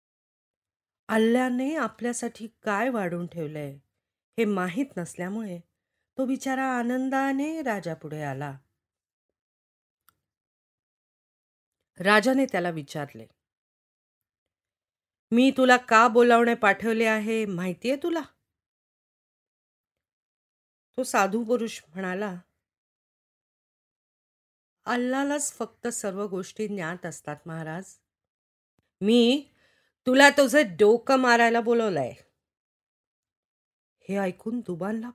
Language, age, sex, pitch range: Marathi, 40-59, female, 175-250 Hz